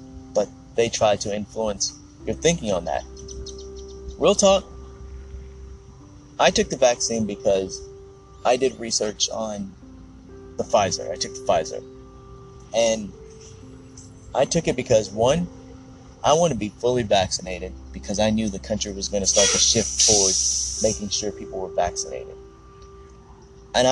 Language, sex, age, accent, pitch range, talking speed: English, male, 30-49, American, 85-115 Hz, 140 wpm